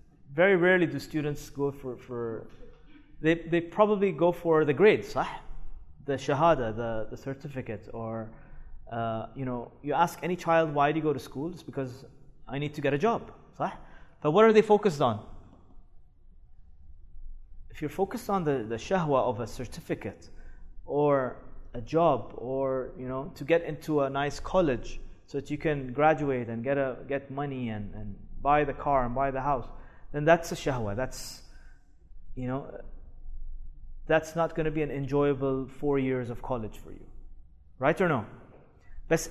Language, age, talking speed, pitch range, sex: English, 30-49, 170 wpm, 120-155 Hz, male